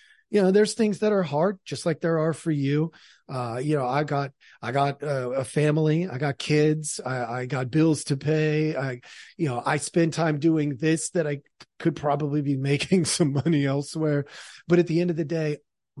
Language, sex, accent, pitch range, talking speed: English, male, American, 130-160 Hz, 210 wpm